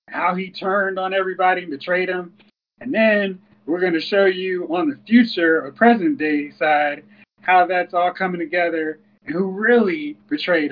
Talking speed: 175 wpm